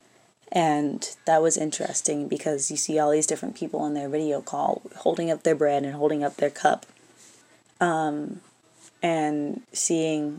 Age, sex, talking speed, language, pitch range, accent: 20-39, female, 155 wpm, English, 150-170 Hz, American